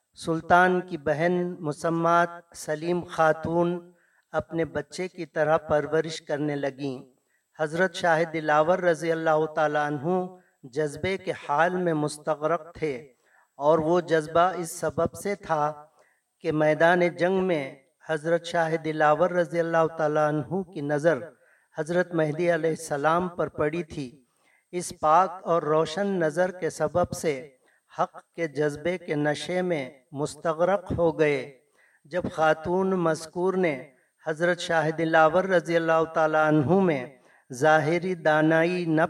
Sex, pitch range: male, 155-175 Hz